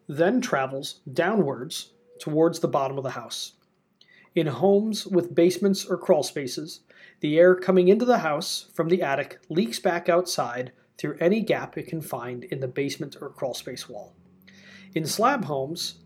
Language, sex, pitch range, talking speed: English, male, 145-195 Hz, 155 wpm